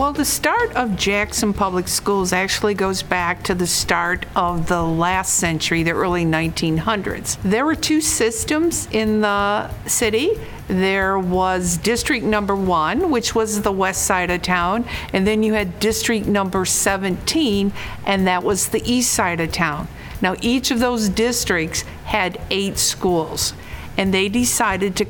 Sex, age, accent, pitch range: female, 50-69, American, 180-215 Hz